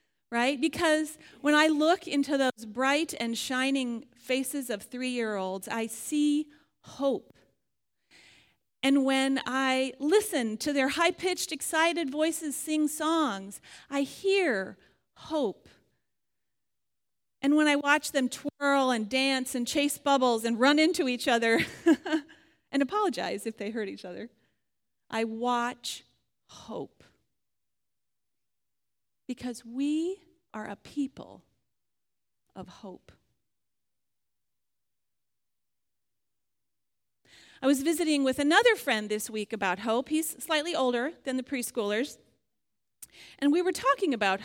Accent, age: American, 40-59